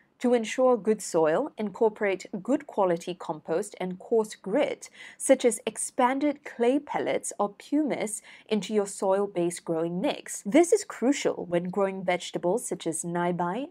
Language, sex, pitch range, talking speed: English, female, 175-245 Hz, 140 wpm